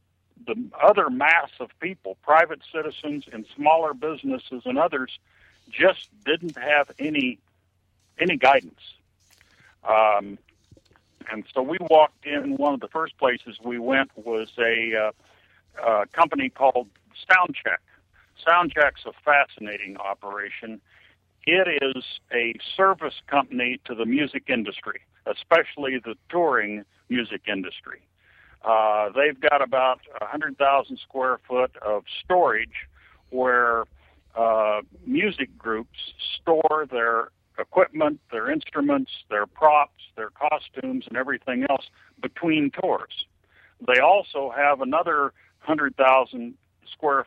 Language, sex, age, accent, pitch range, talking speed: English, male, 60-79, American, 105-145 Hz, 115 wpm